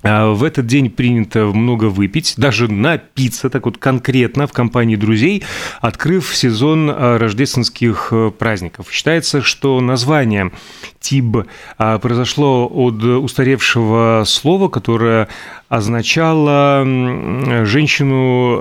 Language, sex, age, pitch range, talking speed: Russian, male, 30-49, 110-140 Hz, 95 wpm